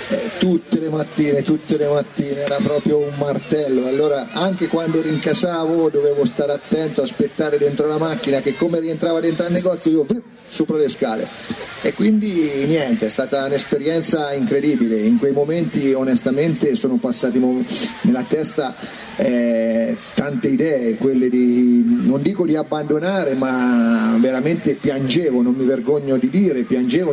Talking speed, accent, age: 145 wpm, native, 40-59